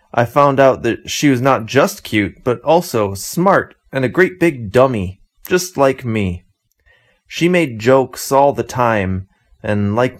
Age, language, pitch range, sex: 30-49, Chinese, 100-130 Hz, male